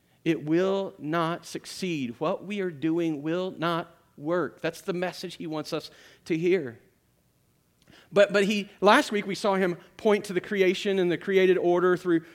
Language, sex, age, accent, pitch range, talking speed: English, male, 40-59, American, 155-185 Hz, 175 wpm